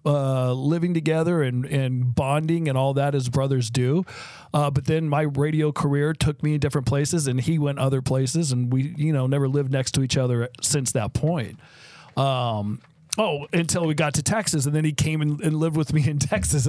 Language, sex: English, male